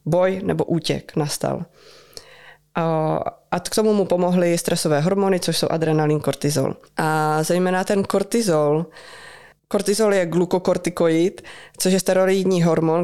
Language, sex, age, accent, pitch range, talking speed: Czech, female, 20-39, native, 155-180 Hz, 120 wpm